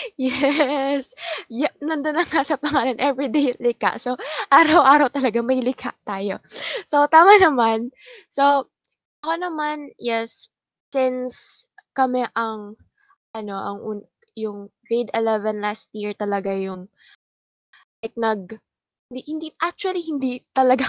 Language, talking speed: Filipino, 120 wpm